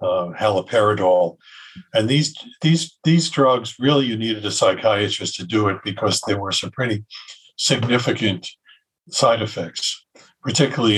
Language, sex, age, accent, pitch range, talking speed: English, male, 50-69, American, 105-135 Hz, 130 wpm